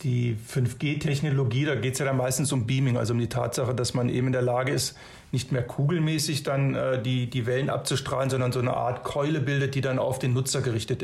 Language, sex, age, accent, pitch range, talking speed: German, male, 40-59, German, 125-140 Hz, 230 wpm